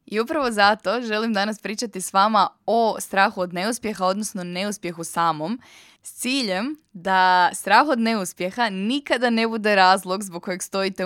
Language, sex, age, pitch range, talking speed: Croatian, female, 20-39, 180-225 Hz, 150 wpm